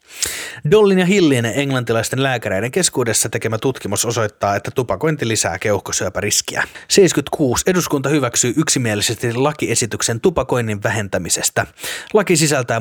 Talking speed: 105 wpm